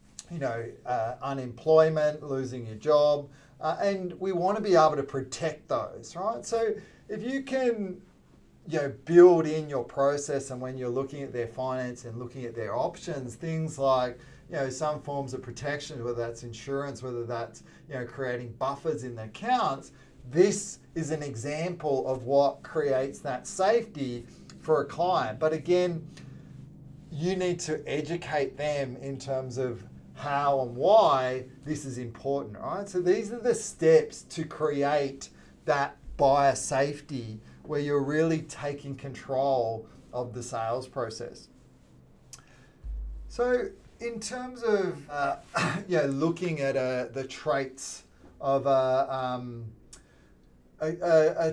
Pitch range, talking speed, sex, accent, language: 125-165 Hz, 140 wpm, male, Australian, English